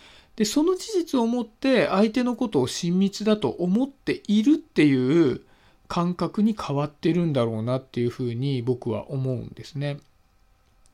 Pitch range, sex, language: 130-210 Hz, male, Japanese